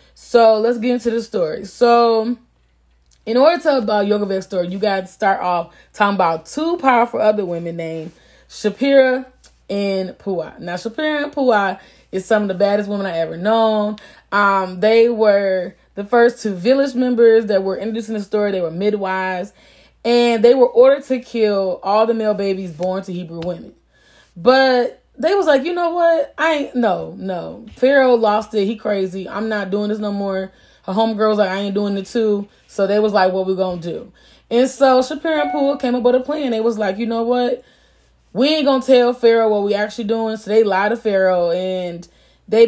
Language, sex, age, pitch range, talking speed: English, female, 20-39, 190-240 Hz, 200 wpm